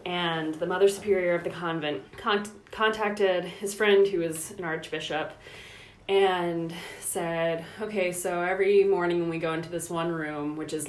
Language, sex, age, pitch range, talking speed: English, female, 20-39, 155-195 Hz, 160 wpm